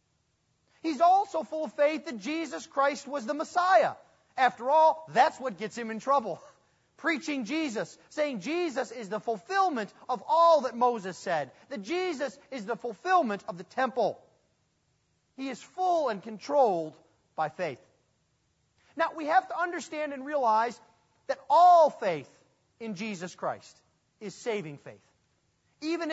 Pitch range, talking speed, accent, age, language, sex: 215-320 Hz, 145 wpm, American, 40-59, English, male